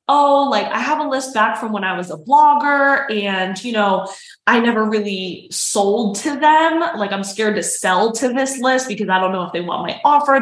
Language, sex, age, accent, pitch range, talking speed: English, female, 20-39, American, 200-260 Hz, 225 wpm